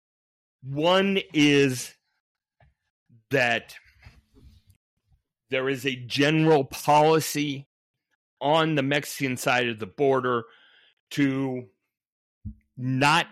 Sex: male